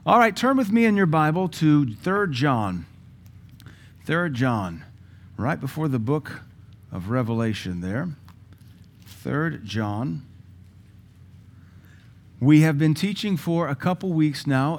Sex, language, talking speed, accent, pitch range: male, English, 125 wpm, American, 105-130 Hz